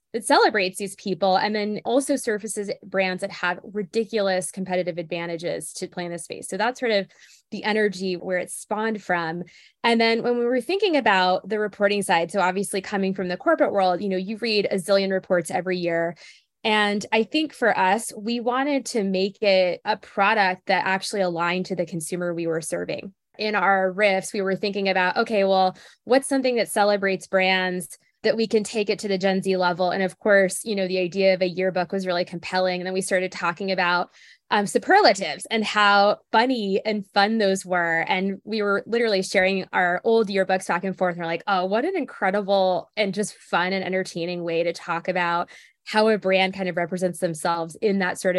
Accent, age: American, 20-39